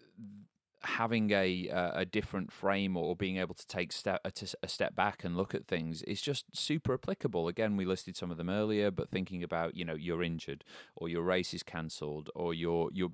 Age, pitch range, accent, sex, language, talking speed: 30-49, 85-100 Hz, British, male, English, 210 wpm